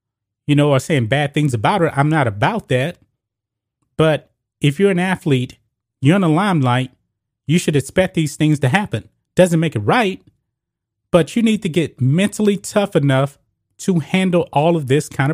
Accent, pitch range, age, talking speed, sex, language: American, 125-165 Hz, 30-49, 180 wpm, male, English